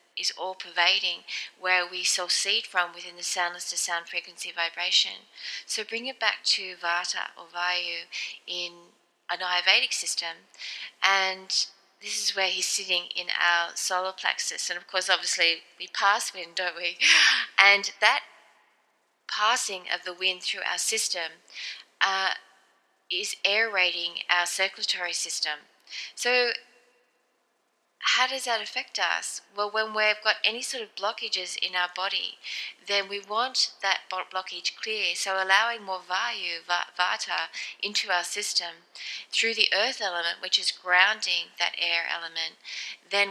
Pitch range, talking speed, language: 175-205 Hz, 140 wpm, English